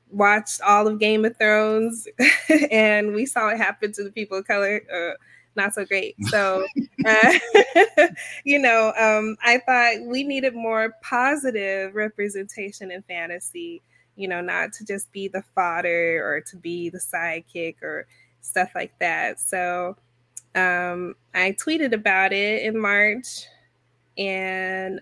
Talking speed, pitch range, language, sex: 145 wpm, 190-230 Hz, English, female